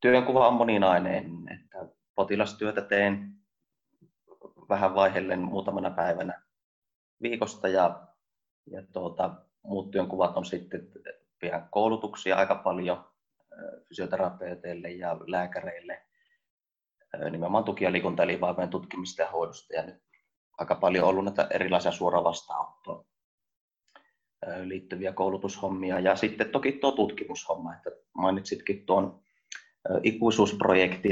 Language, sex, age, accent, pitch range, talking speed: Finnish, male, 30-49, native, 95-105 Hz, 100 wpm